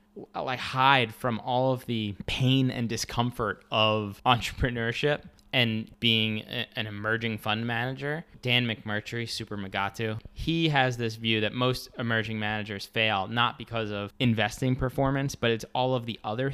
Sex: male